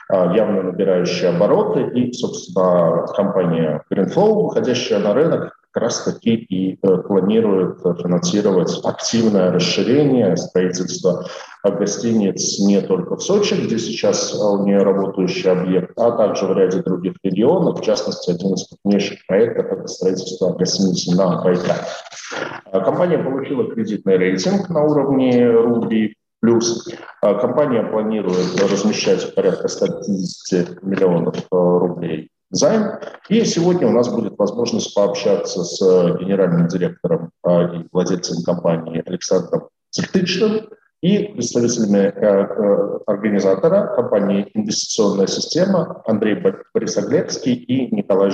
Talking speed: 110 wpm